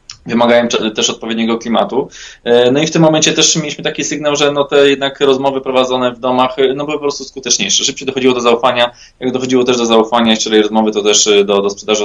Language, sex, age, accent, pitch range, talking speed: Polish, male, 20-39, native, 110-135 Hz, 210 wpm